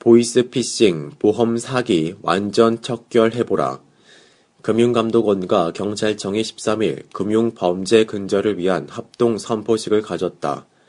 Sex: male